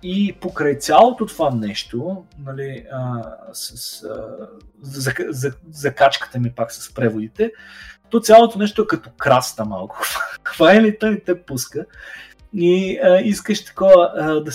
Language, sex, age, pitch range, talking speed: Bulgarian, male, 20-39, 125-185 Hz, 130 wpm